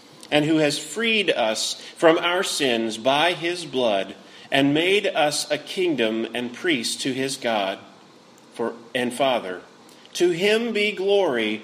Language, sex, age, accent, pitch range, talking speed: English, male, 40-59, American, 120-185 Hz, 145 wpm